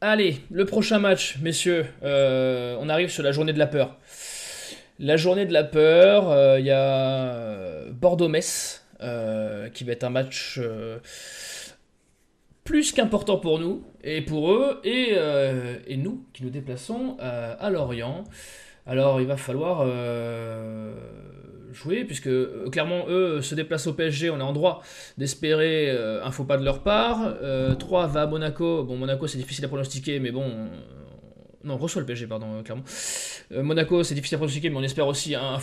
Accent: French